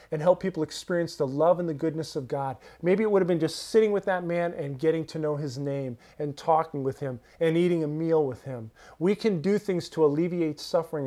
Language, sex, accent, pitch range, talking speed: English, male, American, 145-200 Hz, 240 wpm